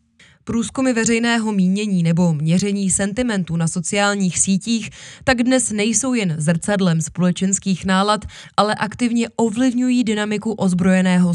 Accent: native